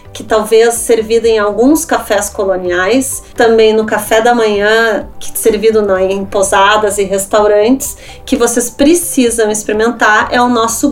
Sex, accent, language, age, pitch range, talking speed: female, Brazilian, Portuguese, 30-49, 215-265 Hz, 130 wpm